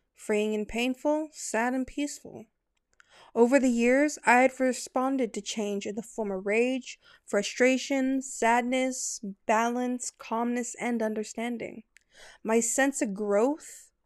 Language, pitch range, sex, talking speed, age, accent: English, 215-270 Hz, female, 125 wpm, 20-39, American